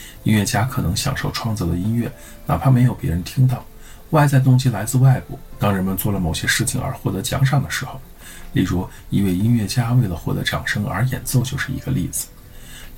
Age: 50-69